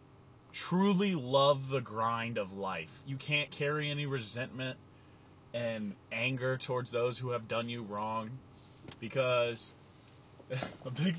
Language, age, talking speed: English, 20-39, 125 wpm